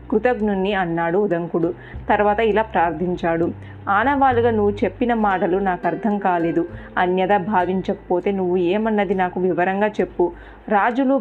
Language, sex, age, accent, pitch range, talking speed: Telugu, female, 30-49, native, 180-210 Hz, 110 wpm